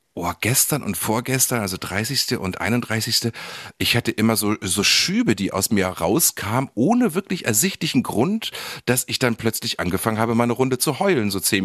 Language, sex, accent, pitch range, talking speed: German, male, German, 80-115 Hz, 175 wpm